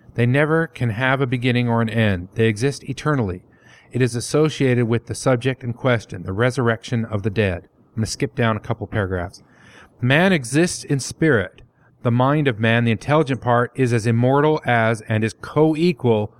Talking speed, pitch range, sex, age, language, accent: 185 wpm, 115-140 Hz, male, 40-59, English, American